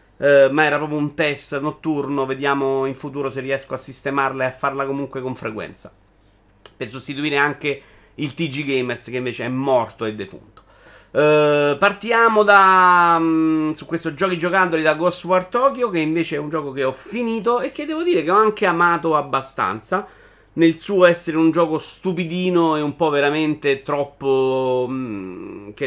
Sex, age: male, 30-49